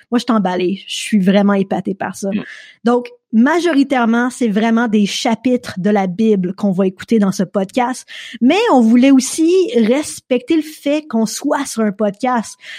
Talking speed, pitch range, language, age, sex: 170 wpm, 215-270 Hz, French, 20-39, female